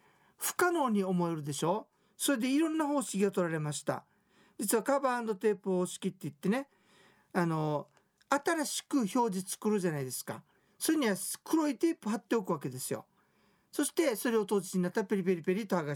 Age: 50-69